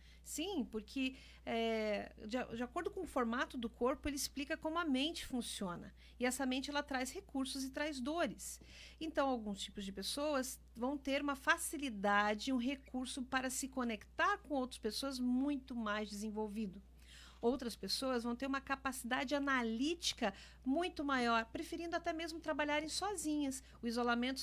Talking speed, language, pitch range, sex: 150 wpm, Portuguese, 230-290 Hz, female